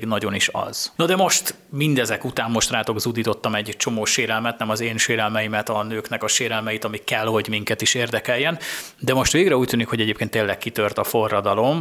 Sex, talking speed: male, 200 wpm